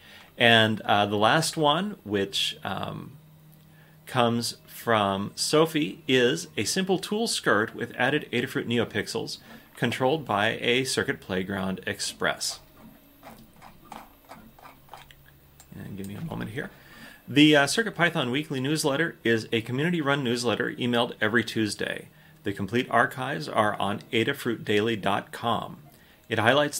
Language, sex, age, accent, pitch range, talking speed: English, male, 30-49, American, 105-145 Hz, 115 wpm